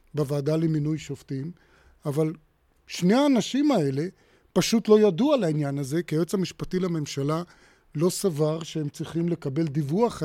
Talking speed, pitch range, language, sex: 135 wpm, 150-190 Hz, Hebrew, male